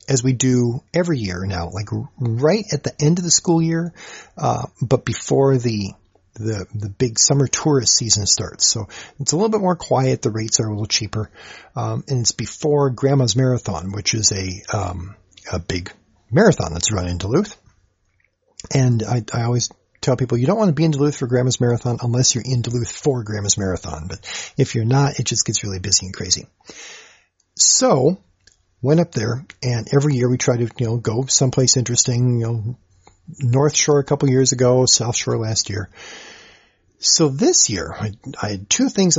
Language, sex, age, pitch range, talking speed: English, male, 40-59, 105-140 Hz, 190 wpm